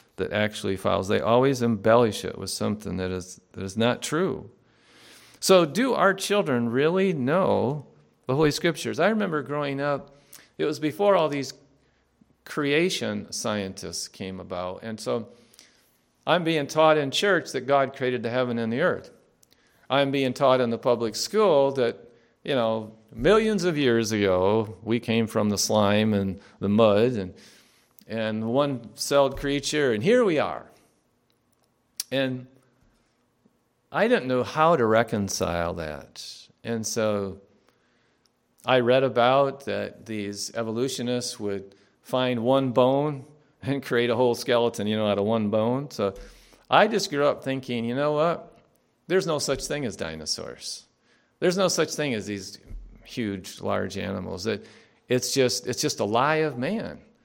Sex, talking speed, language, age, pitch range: male, 150 wpm, English, 40-59, 105-140 Hz